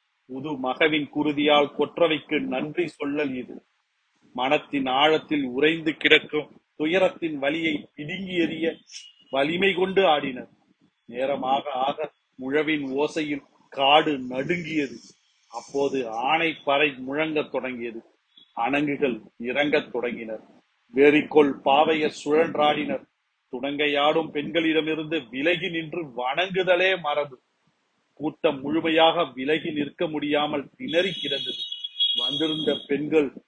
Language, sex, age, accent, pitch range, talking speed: Tamil, male, 40-59, native, 140-160 Hz, 70 wpm